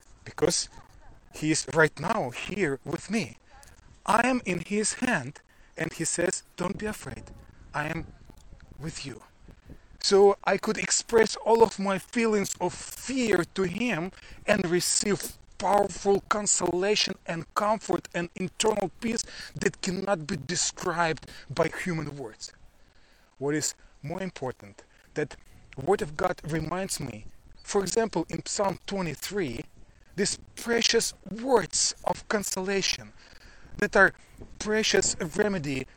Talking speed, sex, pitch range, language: 125 wpm, male, 150-195 Hz, English